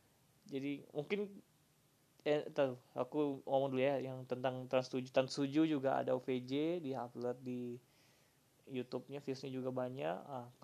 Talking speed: 130 wpm